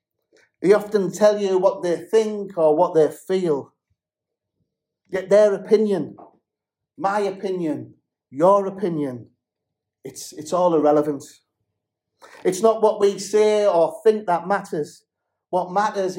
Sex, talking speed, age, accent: male, 120 wpm, 50-69, British